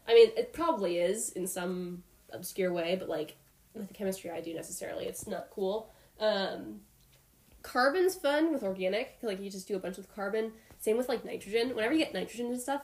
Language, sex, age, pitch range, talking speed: English, female, 10-29, 185-240 Hz, 205 wpm